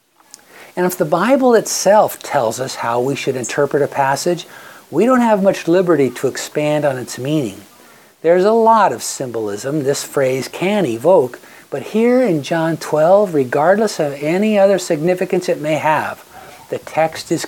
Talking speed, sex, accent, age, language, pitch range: 165 wpm, male, American, 60-79, English, 140-180 Hz